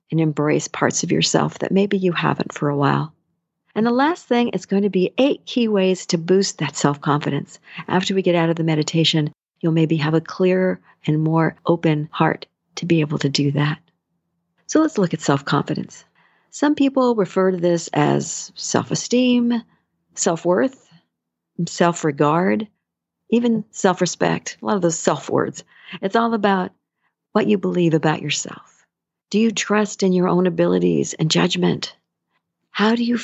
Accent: American